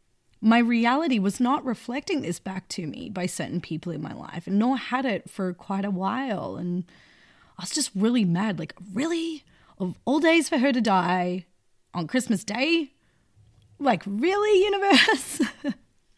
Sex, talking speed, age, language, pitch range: female, 165 wpm, 30-49, English, 185-235 Hz